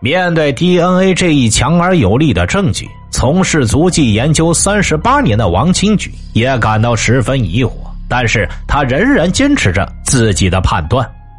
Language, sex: Chinese, male